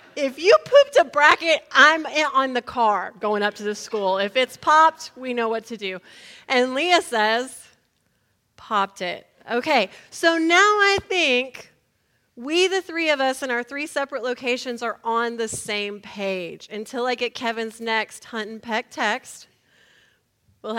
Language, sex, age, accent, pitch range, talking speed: English, female, 30-49, American, 215-300 Hz, 165 wpm